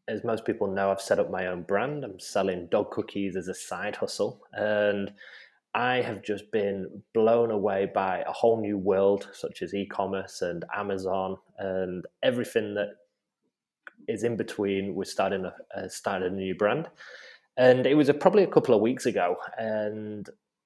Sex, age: male, 20-39